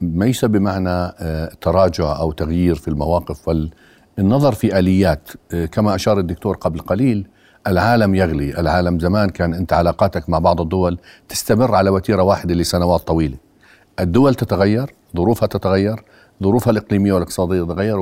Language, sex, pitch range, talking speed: Arabic, male, 90-105 Hz, 130 wpm